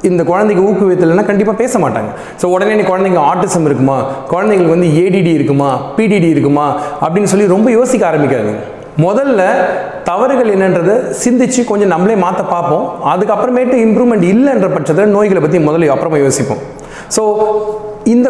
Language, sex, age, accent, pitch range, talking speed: Tamil, male, 30-49, native, 160-210 Hz, 135 wpm